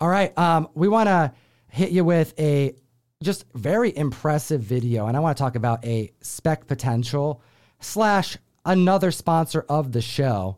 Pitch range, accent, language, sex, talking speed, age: 120-165 Hz, American, English, male, 155 wpm, 30-49